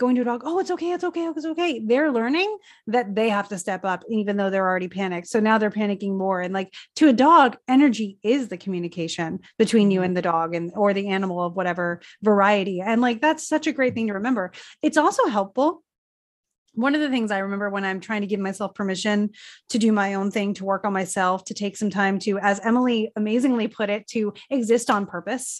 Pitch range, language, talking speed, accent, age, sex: 200-260 Hz, English, 230 wpm, American, 30-49, female